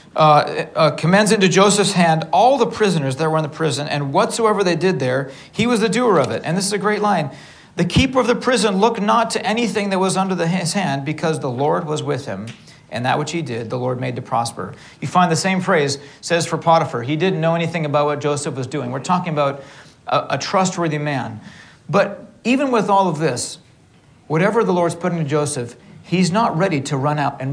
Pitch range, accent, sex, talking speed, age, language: 145-195 Hz, American, male, 230 wpm, 40-59, English